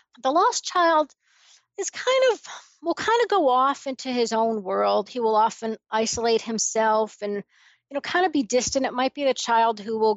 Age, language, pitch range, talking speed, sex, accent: 40-59, English, 205-245 Hz, 200 wpm, female, American